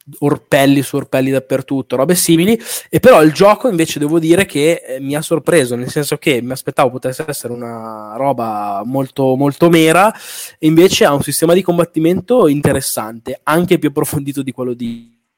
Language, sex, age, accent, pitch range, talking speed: Italian, male, 20-39, native, 130-160 Hz, 170 wpm